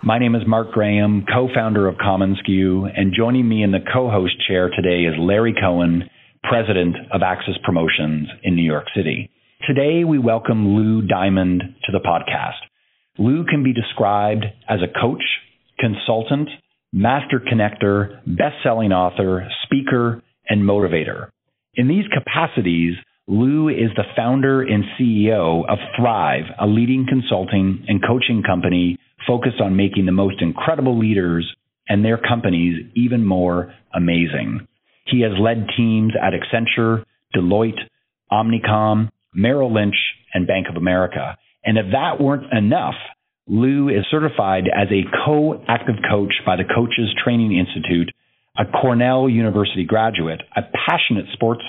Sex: male